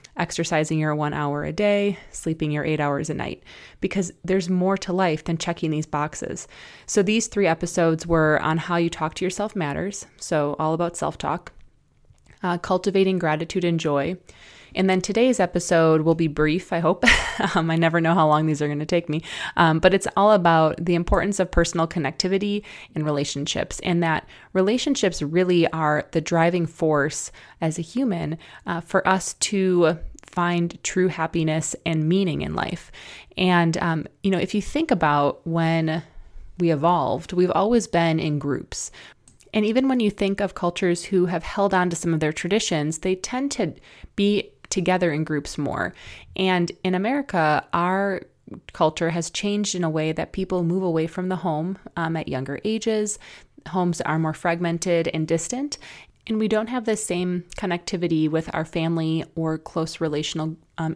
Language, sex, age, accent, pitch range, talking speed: English, female, 20-39, American, 160-190 Hz, 175 wpm